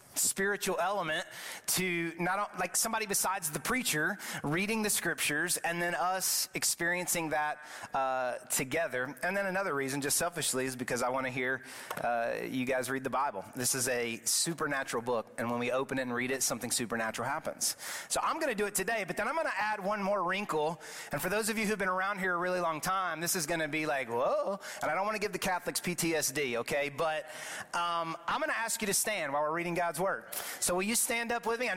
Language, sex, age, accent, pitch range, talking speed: English, male, 30-49, American, 145-200 Hz, 225 wpm